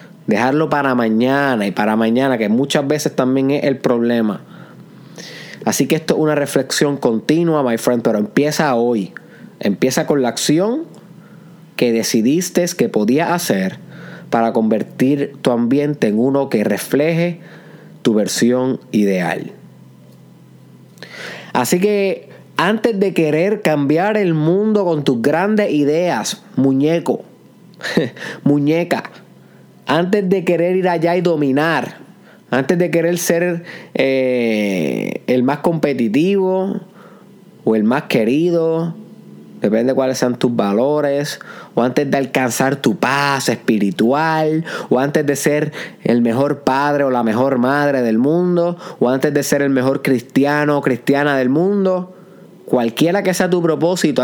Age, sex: 30-49, male